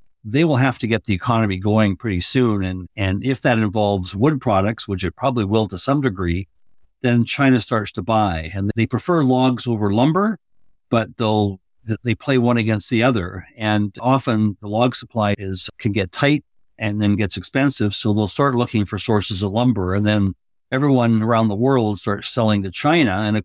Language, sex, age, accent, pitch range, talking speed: English, male, 60-79, American, 95-115 Hz, 195 wpm